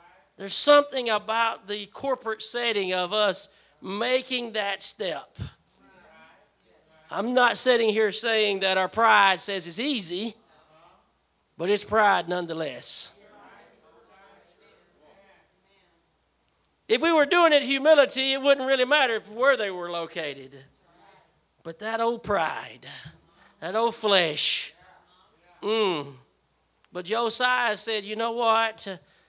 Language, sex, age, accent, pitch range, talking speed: English, male, 40-59, American, 195-245 Hz, 110 wpm